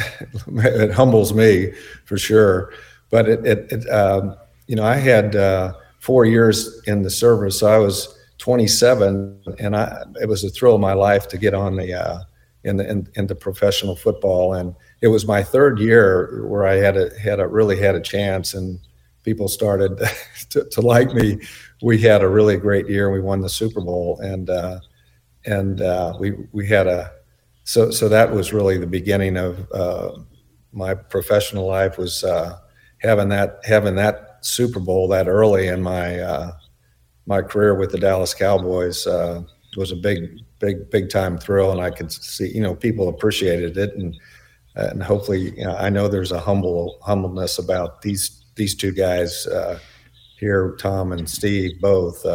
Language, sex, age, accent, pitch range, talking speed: English, male, 50-69, American, 90-105 Hz, 180 wpm